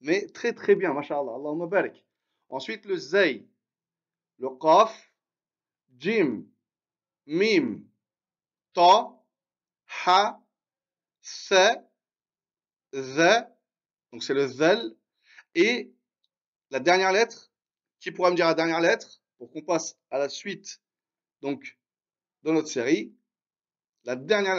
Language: French